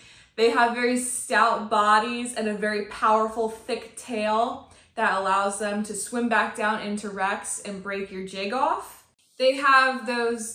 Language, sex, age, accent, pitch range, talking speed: English, female, 20-39, American, 205-245 Hz, 160 wpm